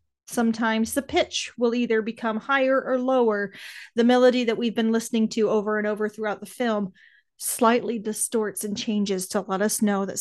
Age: 30-49